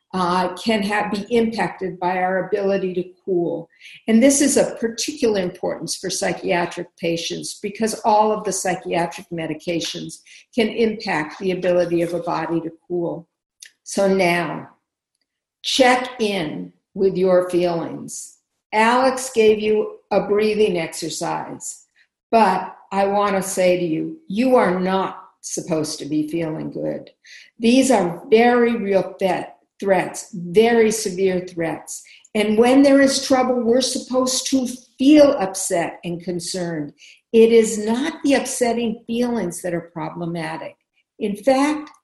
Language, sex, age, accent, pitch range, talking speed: English, female, 50-69, American, 175-230 Hz, 135 wpm